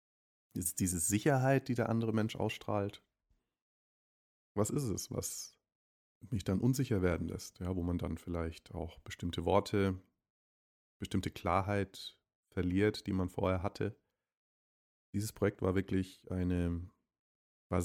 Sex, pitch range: male, 90-110 Hz